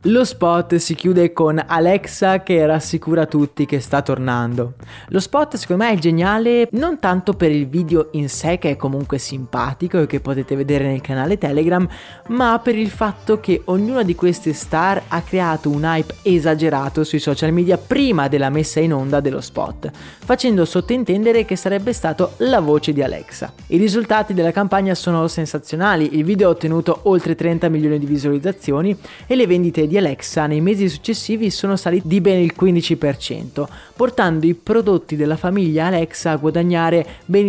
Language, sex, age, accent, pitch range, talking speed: Italian, male, 20-39, native, 150-195 Hz, 175 wpm